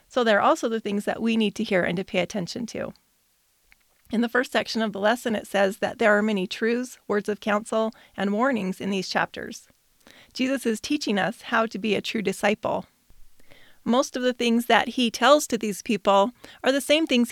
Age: 30-49